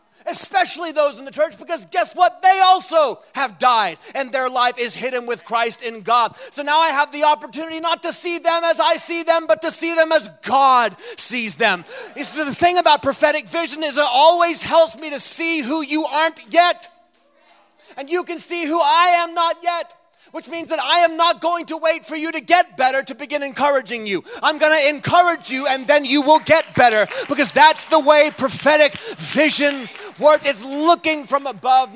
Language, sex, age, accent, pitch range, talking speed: English, male, 30-49, American, 240-330 Hz, 205 wpm